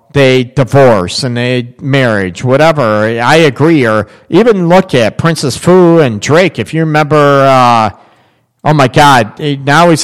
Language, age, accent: English, 40-59, American